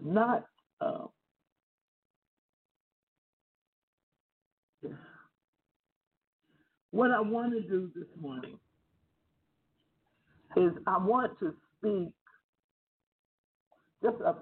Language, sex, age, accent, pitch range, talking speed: English, male, 50-69, American, 170-225 Hz, 60 wpm